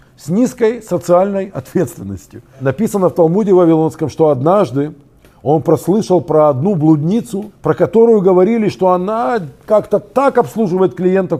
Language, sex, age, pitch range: Russian, male, 50-69, 140-190 Hz